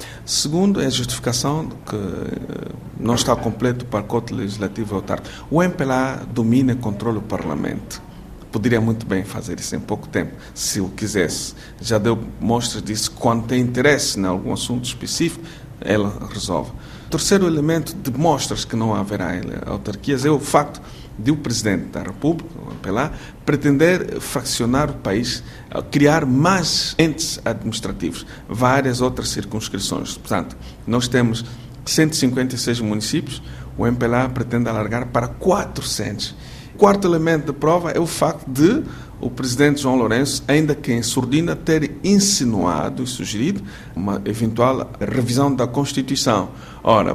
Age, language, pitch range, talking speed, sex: 50-69, Portuguese, 110-145 Hz, 140 wpm, male